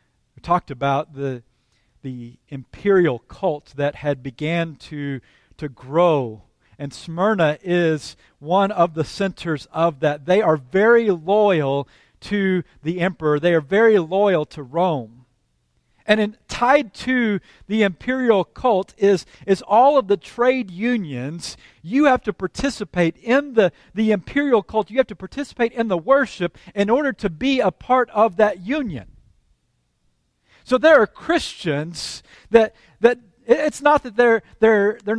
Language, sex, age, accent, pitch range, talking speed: English, male, 40-59, American, 150-230 Hz, 145 wpm